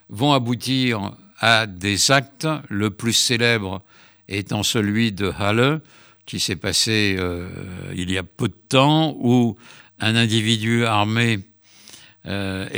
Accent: French